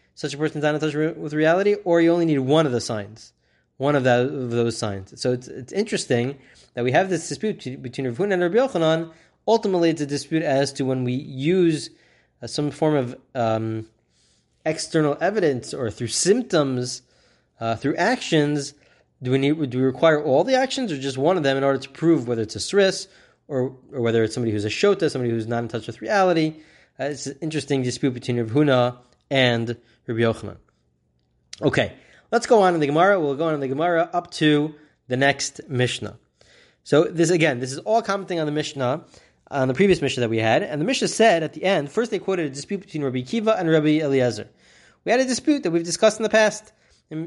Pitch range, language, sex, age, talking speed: 125-185 Hz, English, male, 20-39, 215 wpm